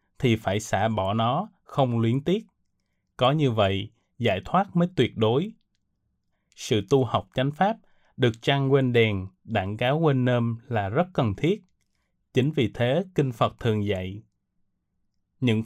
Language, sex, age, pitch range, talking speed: Vietnamese, male, 20-39, 110-150 Hz, 155 wpm